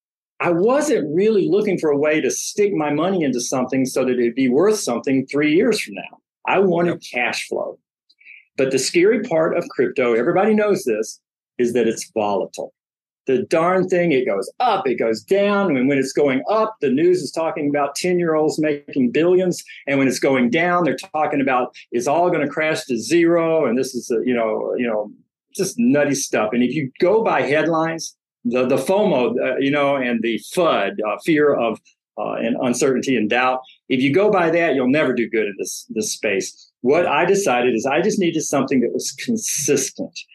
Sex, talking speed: male, 200 wpm